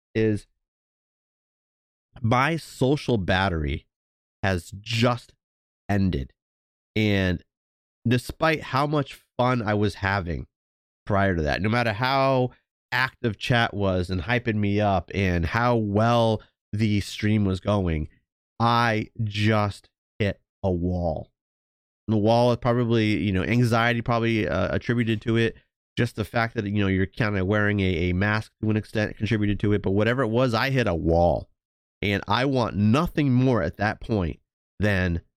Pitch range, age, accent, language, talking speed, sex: 90-115 Hz, 30-49, American, English, 155 wpm, male